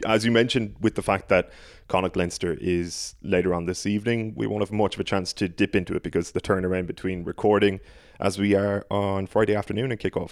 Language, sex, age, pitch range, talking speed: English, male, 20-39, 95-115 Hz, 220 wpm